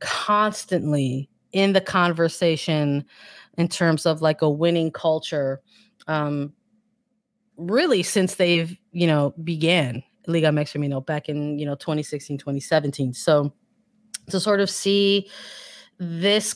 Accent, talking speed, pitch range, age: American, 115 wpm, 155-195 Hz, 20-39